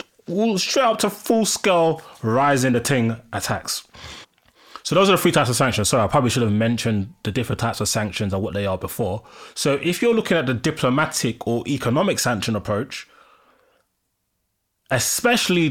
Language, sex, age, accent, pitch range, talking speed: English, male, 20-39, British, 110-145 Hz, 170 wpm